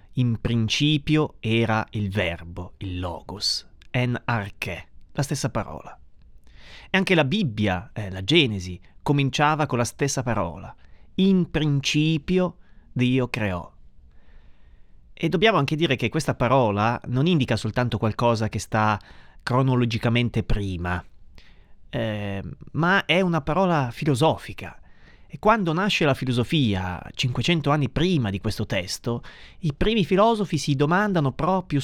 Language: Italian